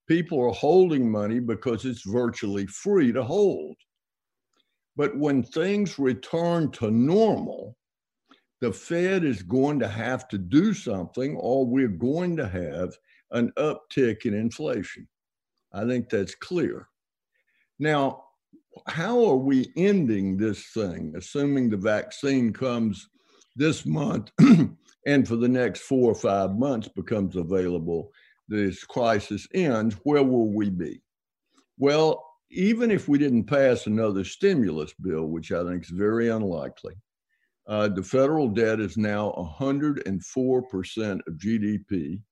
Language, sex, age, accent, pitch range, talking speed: English, male, 60-79, American, 100-145 Hz, 130 wpm